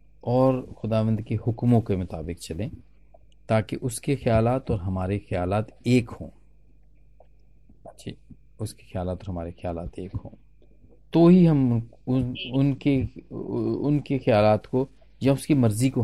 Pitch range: 100-130 Hz